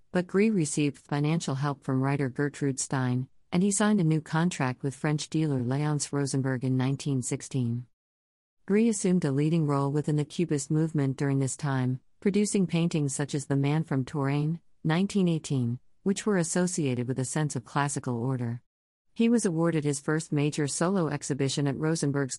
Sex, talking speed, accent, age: female, 165 wpm, American, 50-69